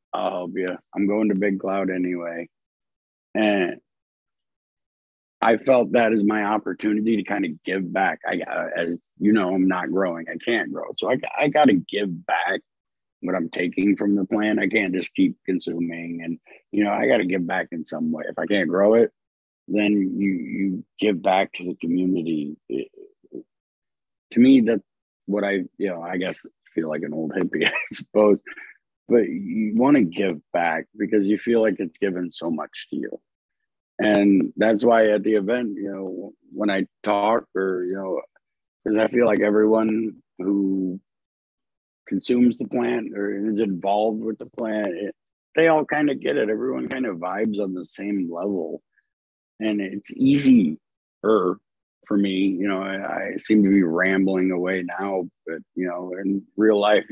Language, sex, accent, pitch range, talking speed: English, male, American, 95-110 Hz, 180 wpm